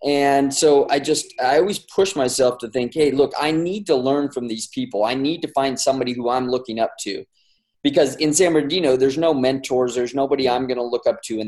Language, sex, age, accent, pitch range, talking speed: English, male, 20-39, American, 115-140 Hz, 235 wpm